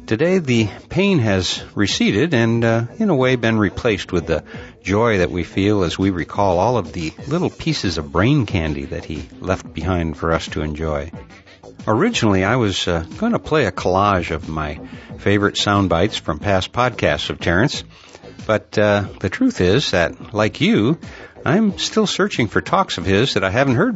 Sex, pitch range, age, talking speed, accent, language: male, 90-120 Hz, 60-79, 190 wpm, American, English